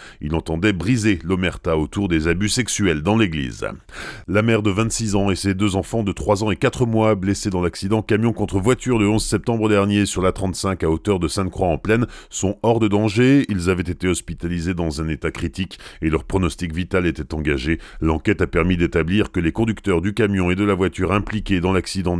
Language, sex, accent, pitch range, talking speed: French, male, French, 85-115 Hz, 215 wpm